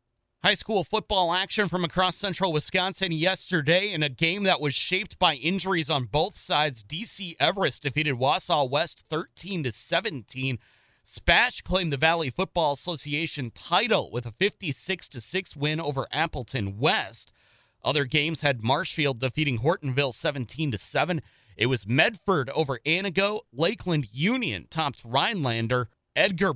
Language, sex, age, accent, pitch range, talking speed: English, male, 30-49, American, 135-185 Hz, 130 wpm